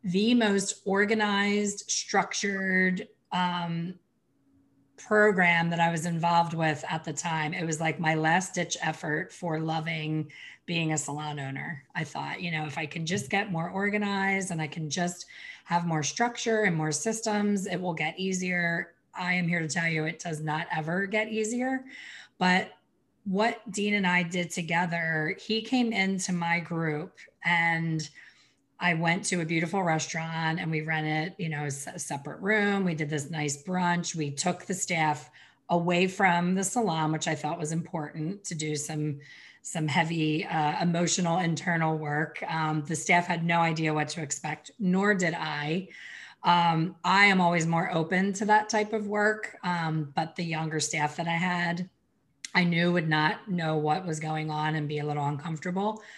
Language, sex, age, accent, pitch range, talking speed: English, female, 30-49, American, 155-190 Hz, 170 wpm